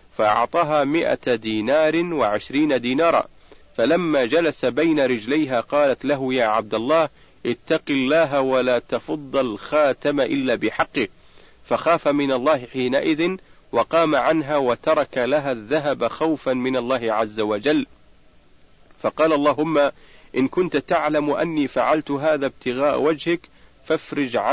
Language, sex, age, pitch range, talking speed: Arabic, male, 50-69, 125-155 Hz, 115 wpm